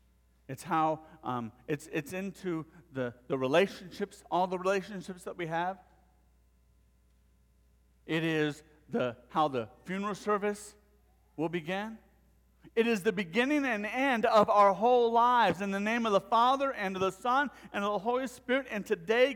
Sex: male